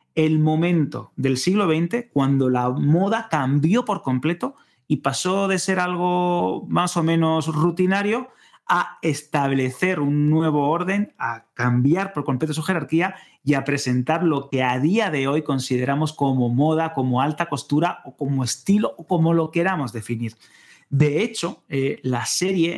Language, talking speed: Spanish, 155 wpm